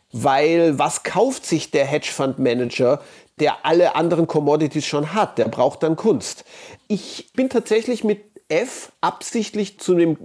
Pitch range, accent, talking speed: 160-220 Hz, German, 145 wpm